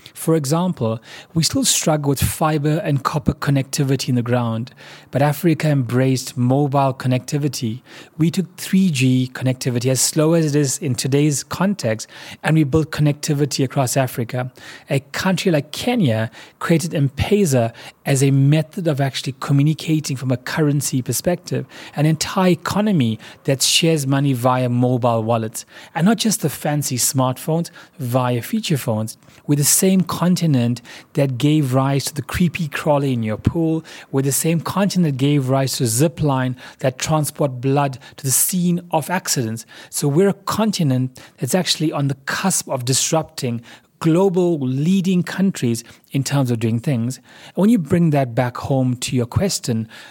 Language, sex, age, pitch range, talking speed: English, male, 30-49, 130-160 Hz, 155 wpm